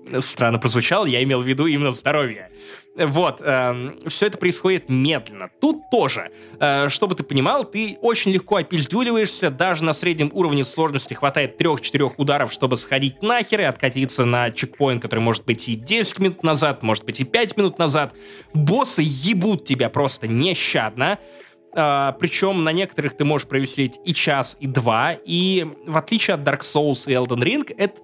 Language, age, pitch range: Russian, 20-39, 125-170 Hz